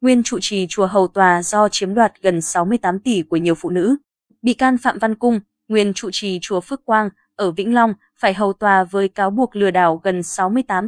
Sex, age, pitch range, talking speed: female, 20-39, 185-230 Hz, 220 wpm